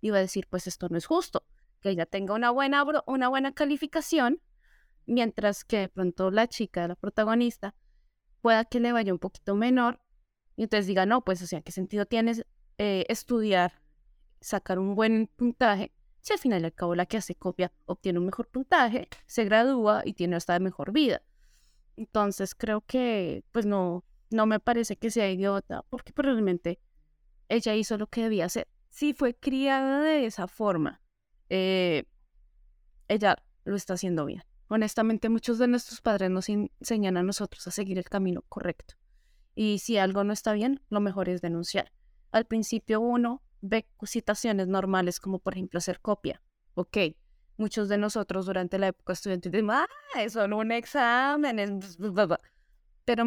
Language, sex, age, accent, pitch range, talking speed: Spanish, female, 20-39, Colombian, 185-235 Hz, 170 wpm